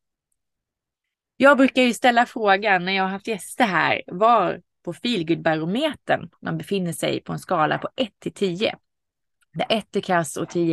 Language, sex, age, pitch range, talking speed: Swedish, female, 30-49, 170-245 Hz, 170 wpm